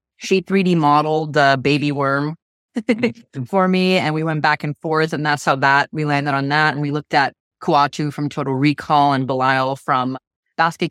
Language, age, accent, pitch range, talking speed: English, 20-39, American, 140-170 Hz, 185 wpm